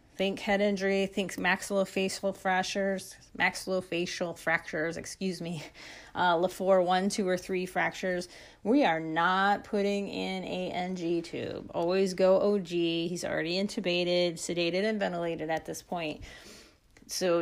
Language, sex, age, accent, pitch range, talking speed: English, female, 30-49, American, 175-210 Hz, 130 wpm